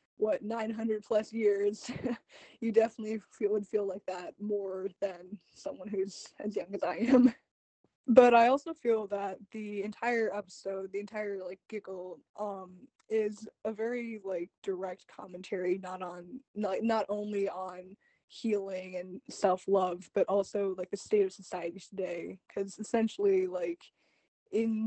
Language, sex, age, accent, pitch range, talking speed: English, female, 20-39, American, 190-220 Hz, 145 wpm